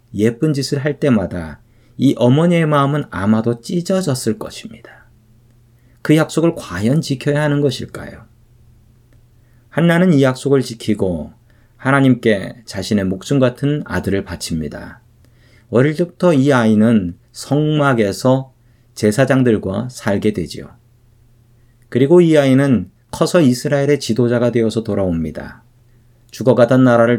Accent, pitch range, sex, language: native, 115-140 Hz, male, Korean